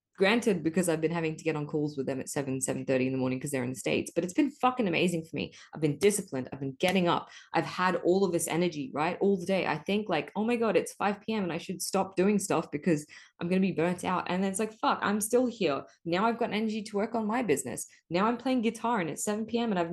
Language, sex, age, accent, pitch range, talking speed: English, female, 20-39, Australian, 170-225 Hz, 285 wpm